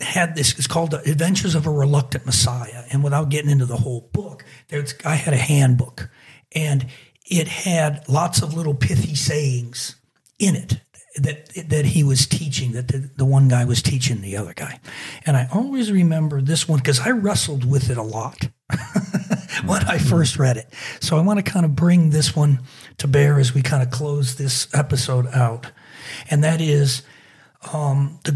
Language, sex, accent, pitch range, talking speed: English, male, American, 130-160 Hz, 190 wpm